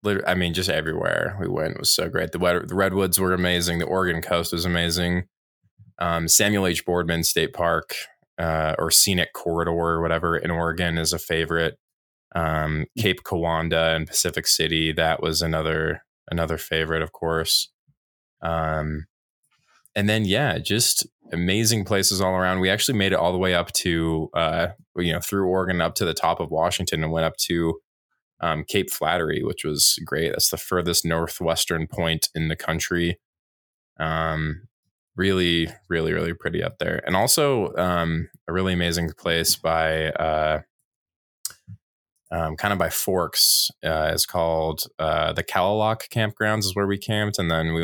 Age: 20-39